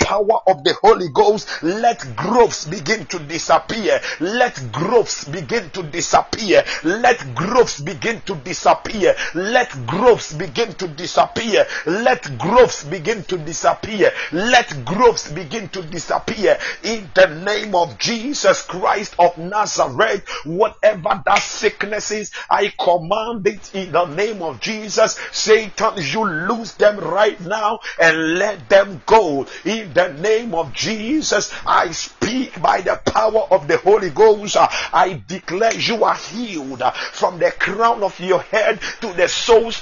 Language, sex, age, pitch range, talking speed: English, male, 50-69, 180-230 Hz, 140 wpm